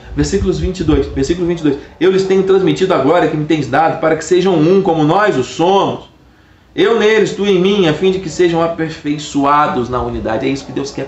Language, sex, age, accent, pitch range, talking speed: Portuguese, male, 40-59, Brazilian, 135-175 Hz, 215 wpm